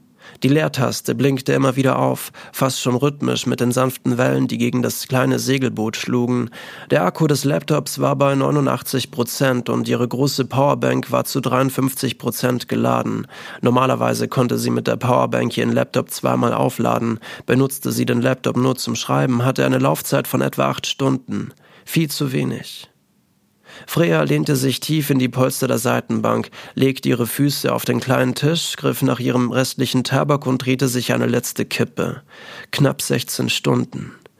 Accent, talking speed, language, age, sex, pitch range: German, 160 wpm, German, 30-49, male, 120-140 Hz